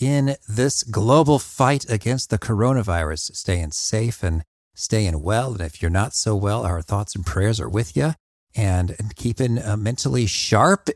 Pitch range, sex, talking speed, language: 105-145 Hz, male, 170 wpm, English